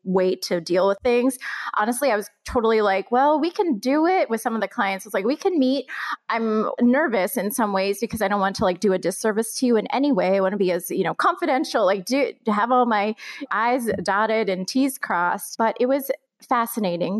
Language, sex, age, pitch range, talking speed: English, female, 20-39, 195-260 Hz, 230 wpm